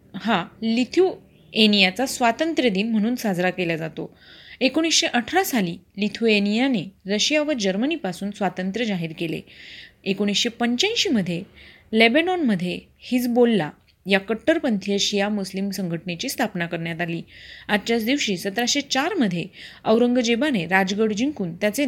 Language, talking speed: Marathi, 100 wpm